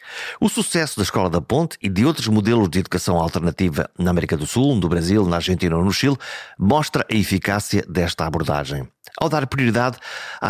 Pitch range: 90-125 Hz